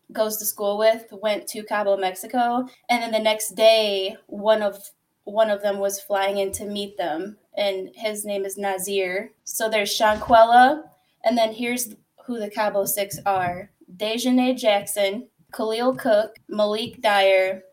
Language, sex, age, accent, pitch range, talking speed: English, female, 10-29, American, 200-225 Hz, 160 wpm